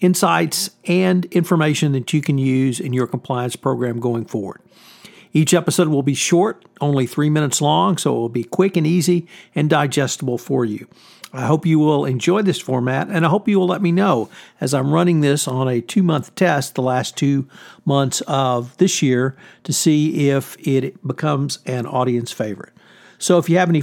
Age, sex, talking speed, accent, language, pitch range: 50-69, male, 190 wpm, American, English, 130-175 Hz